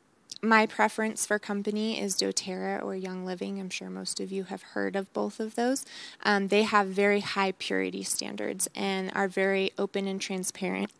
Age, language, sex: 20-39, English, female